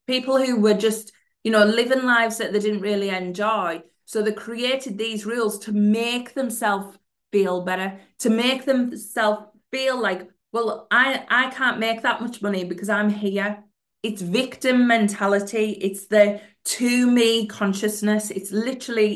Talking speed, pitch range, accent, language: 155 wpm, 190-225 Hz, British, English